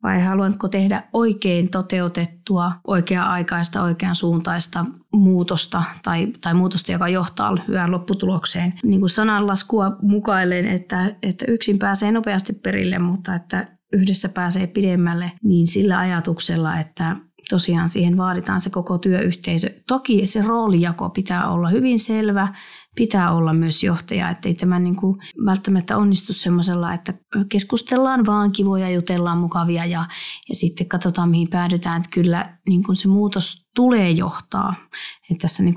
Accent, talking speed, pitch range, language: native, 140 wpm, 175-195 Hz, Finnish